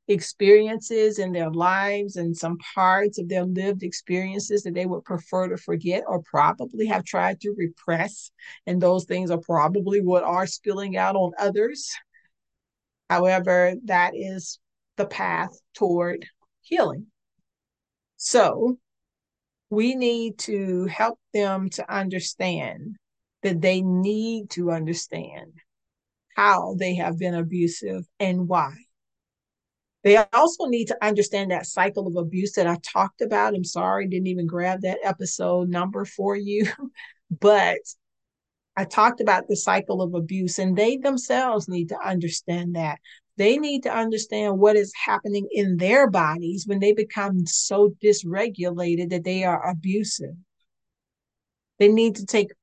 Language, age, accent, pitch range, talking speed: English, 50-69, American, 180-210 Hz, 140 wpm